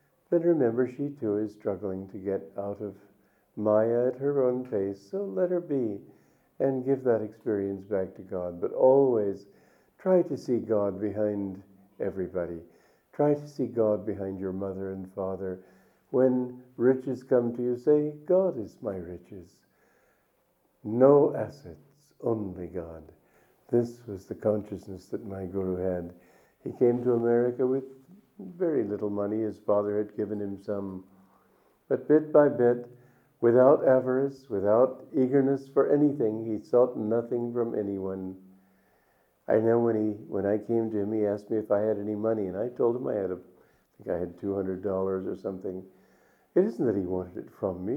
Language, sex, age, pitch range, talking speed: English, male, 50-69, 95-130 Hz, 170 wpm